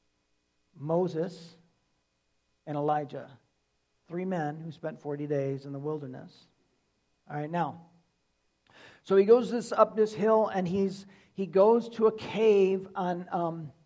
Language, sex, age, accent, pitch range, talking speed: English, male, 50-69, American, 135-170 Hz, 135 wpm